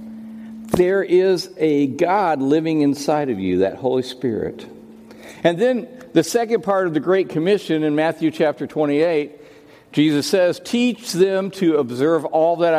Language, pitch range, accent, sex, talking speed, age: English, 115-185 Hz, American, male, 150 wpm, 60-79